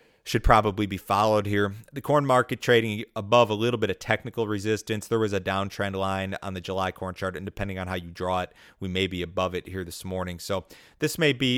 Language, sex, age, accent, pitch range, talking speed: English, male, 30-49, American, 90-105 Hz, 235 wpm